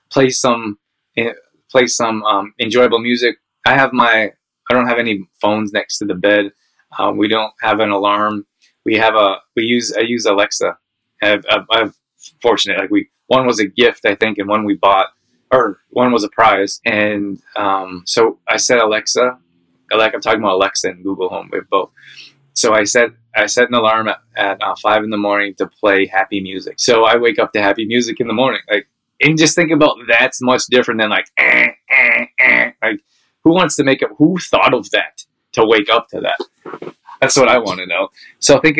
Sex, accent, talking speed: male, American, 210 wpm